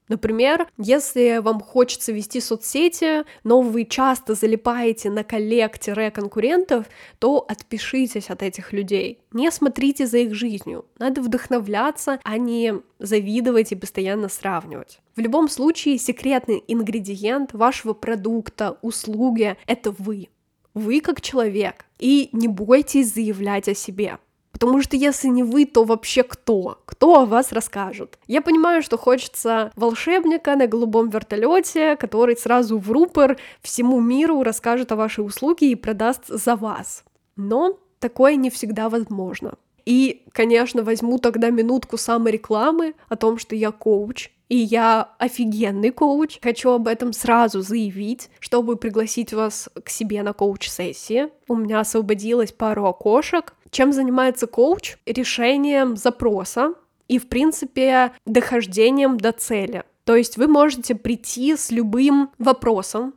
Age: 10-29